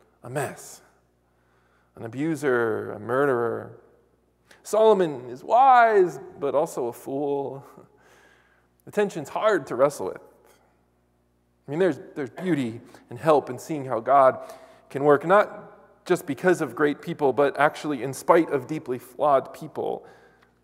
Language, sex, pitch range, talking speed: English, male, 105-155 Hz, 130 wpm